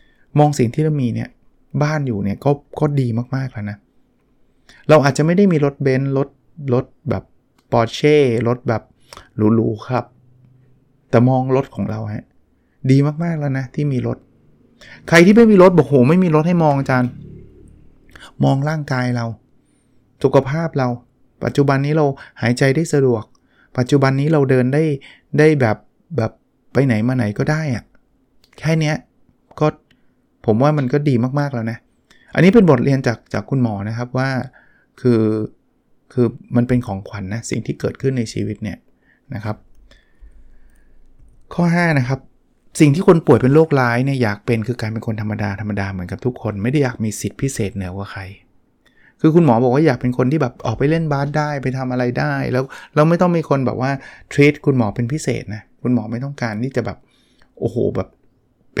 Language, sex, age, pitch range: Thai, male, 20-39, 115-145 Hz